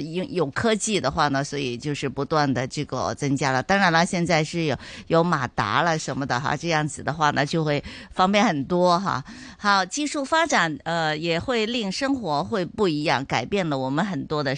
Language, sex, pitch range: Chinese, female, 145-205 Hz